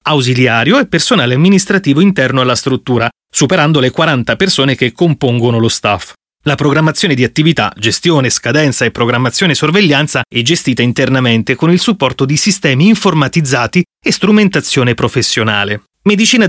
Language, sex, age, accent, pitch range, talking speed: Italian, male, 30-49, native, 125-175 Hz, 135 wpm